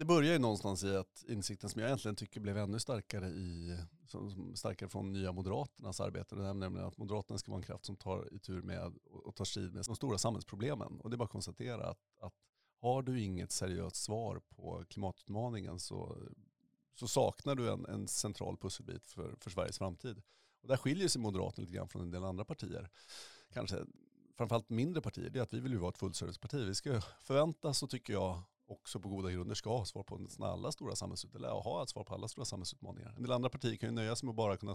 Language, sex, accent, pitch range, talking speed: Swedish, male, native, 95-120 Hz, 220 wpm